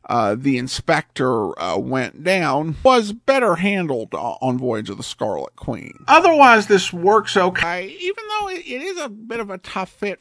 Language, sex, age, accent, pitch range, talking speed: English, male, 50-69, American, 135-200 Hz, 170 wpm